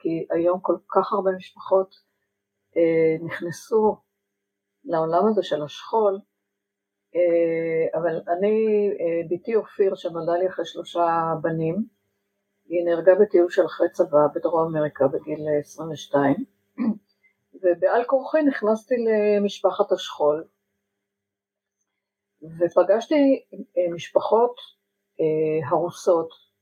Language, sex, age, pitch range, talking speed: Hebrew, female, 50-69, 150-200 Hz, 100 wpm